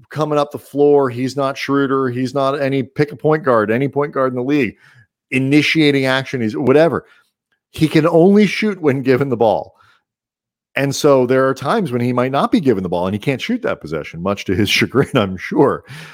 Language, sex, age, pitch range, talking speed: English, male, 40-59, 105-140 Hz, 210 wpm